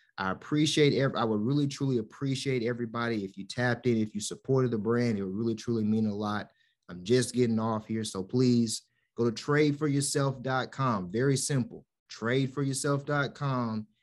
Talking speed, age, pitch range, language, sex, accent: 165 wpm, 30-49, 110-135 Hz, English, male, American